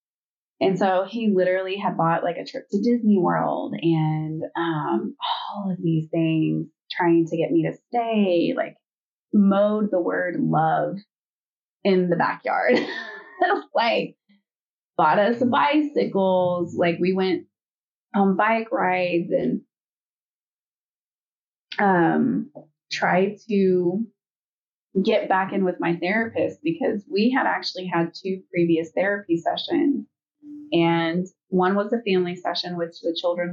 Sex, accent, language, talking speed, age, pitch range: female, American, English, 125 wpm, 20-39, 170-210 Hz